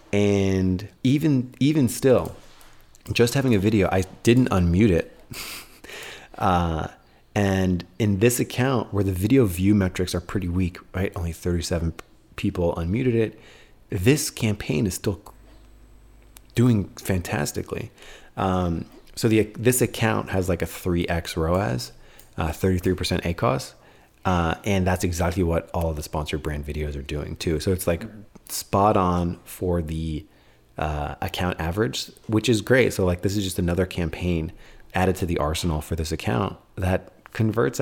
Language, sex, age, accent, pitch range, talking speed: English, male, 30-49, American, 85-110 Hz, 145 wpm